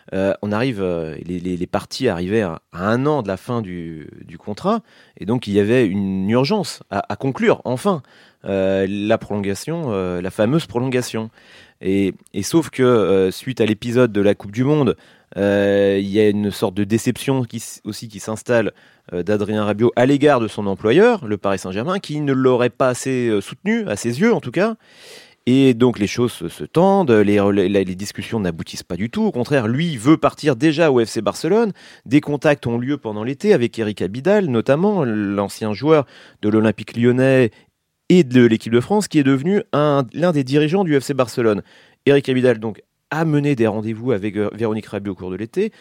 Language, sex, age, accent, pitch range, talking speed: French, male, 30-49, French, 105-150 Hz, 200 wpm